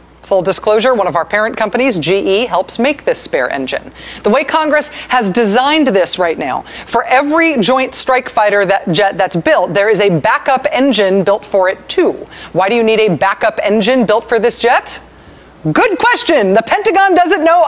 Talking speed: 185 wpm